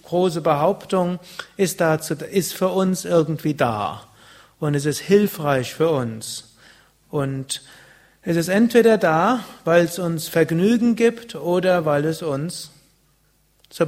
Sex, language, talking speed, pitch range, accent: male, German, 130 wpm, 145-185 Hz, German